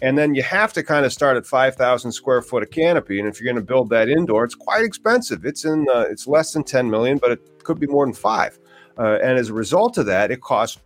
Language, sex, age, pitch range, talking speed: English, male, 40-59, 105-150 Hz, 275 wpm